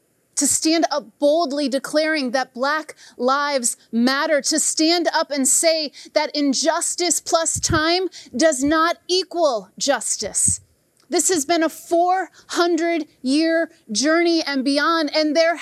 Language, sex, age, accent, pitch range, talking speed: English, female, 30-49, American, 245-315 Hz, 125 wpm